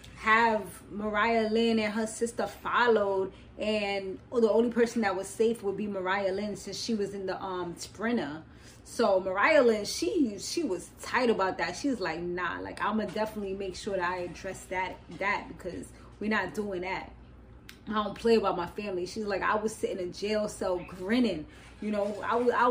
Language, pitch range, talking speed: English, 195-235 Hz, 195 wpm